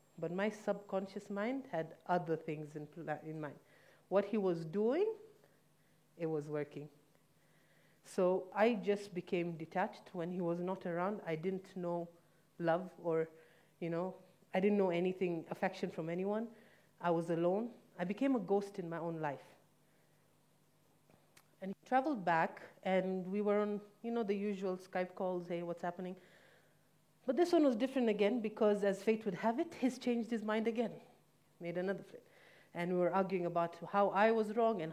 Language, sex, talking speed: English, female, 170 wpm